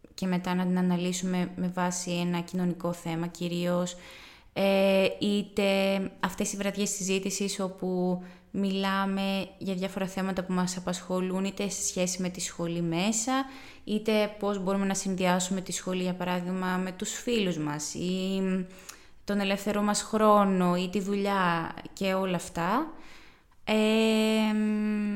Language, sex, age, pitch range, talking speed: Greek, female, 20-39, 180-215 Hz, 135 wpm